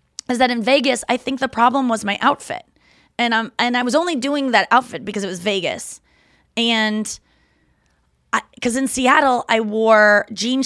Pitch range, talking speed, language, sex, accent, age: 190-250 Hz, 170 wpm, English, female, American, 20-39